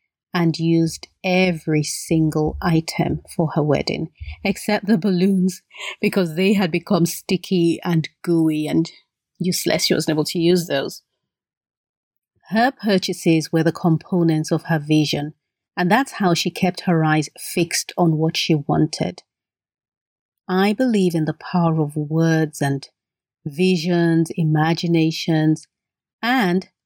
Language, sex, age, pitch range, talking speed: English, female, 40-59, 155-185 Hz, 130 wpm